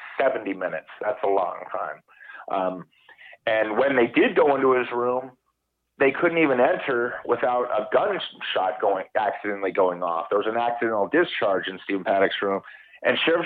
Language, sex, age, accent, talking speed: English, male, 30-49, American, 160 wpm